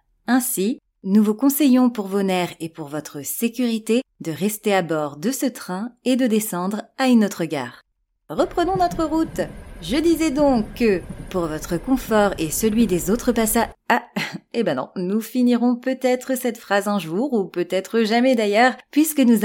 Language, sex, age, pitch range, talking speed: French, female, 30-49, 185-240 Hz, 175 wpm